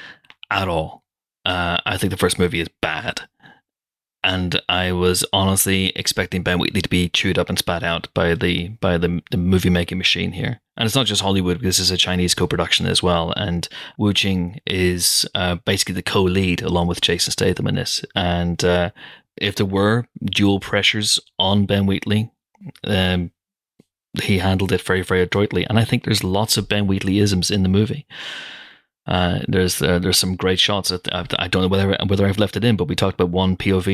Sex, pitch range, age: male, 90-105 Hz, 30-49